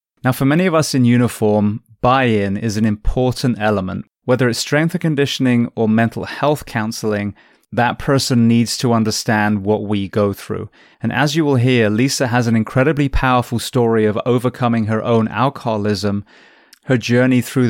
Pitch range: 110-130 Hz